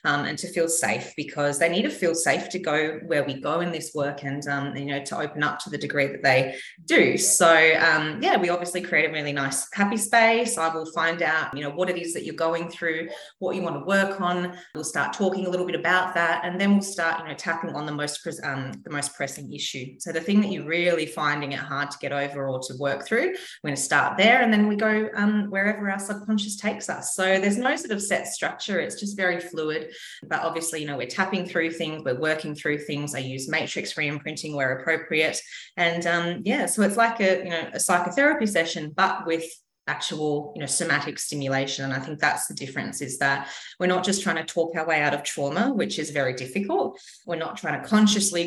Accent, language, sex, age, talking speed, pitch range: Australian, English, female, 30-49, 240 wpm, 145-185 Hz